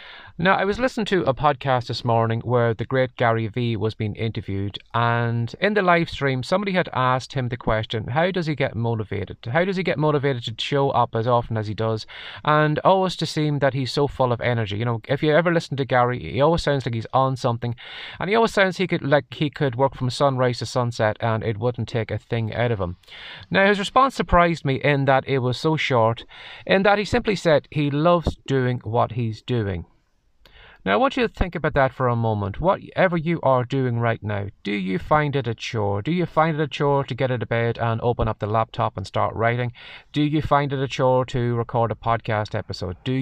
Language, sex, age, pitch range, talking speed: English, male, 30-49, 115-155 Hz, 235 wpm